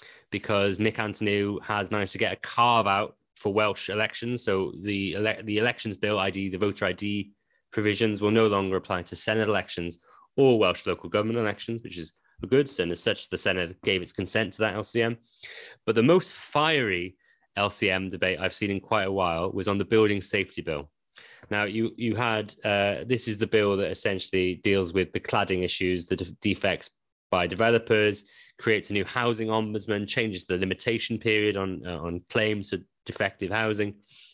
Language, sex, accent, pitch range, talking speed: English, male, British, 95-110 Hz, 185 wpm